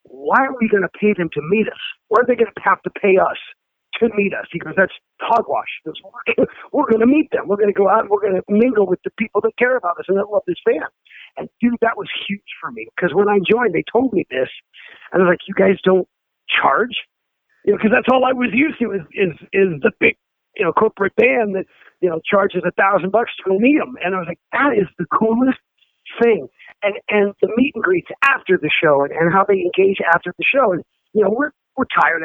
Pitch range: 185-230 Hz